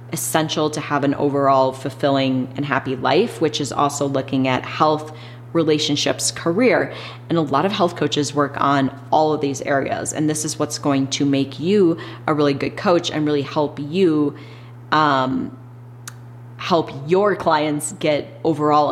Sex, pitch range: female, 130-155 Hz